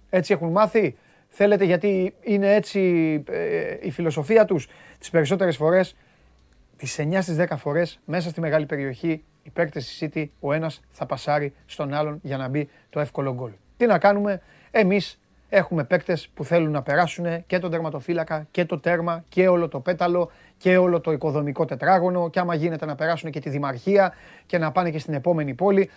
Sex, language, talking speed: male, Greek, 185 wpm